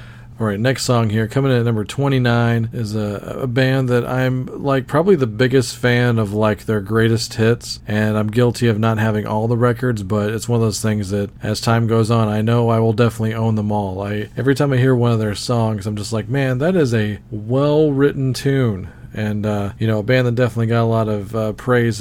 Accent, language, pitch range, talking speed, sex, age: American, English, 110-125 Hz, 230 wpm, male, 40-59